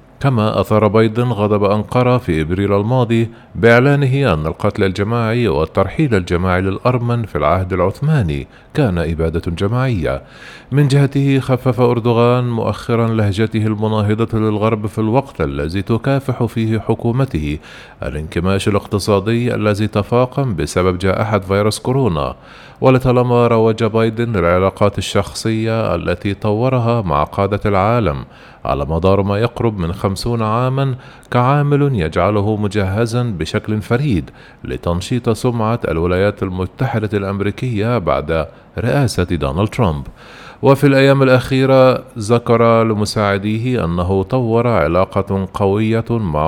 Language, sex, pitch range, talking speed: Arabic, male, 95-120 Hz, 110 wpm